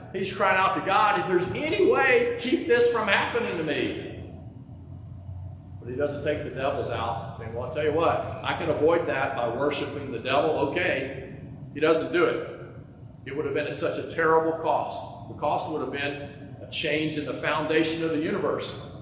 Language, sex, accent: English, male, American